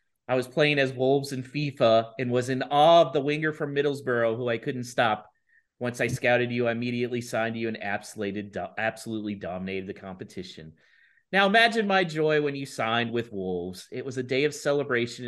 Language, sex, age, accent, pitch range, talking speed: English, male, 30-49, American, 110-160 Hz, 190 wpm